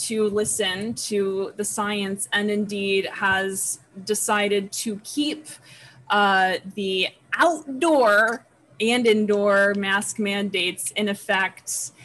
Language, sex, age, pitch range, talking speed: English, female, 20-39, 200-235 Hz, 100 wpm